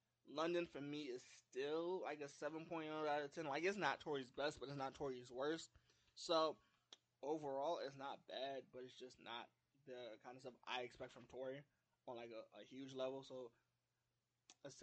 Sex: male